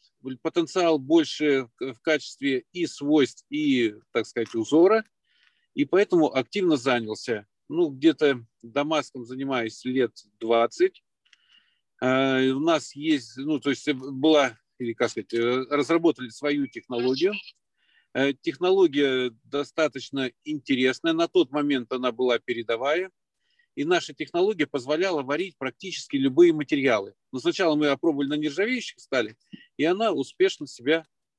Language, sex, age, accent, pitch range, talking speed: Russian, male, 40-59, native, 130-190 Hz, 115 wpm